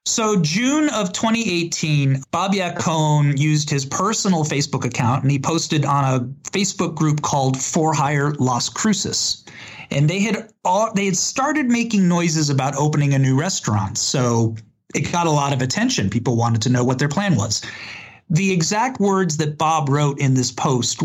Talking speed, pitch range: 175 wpm, 130-175 Hz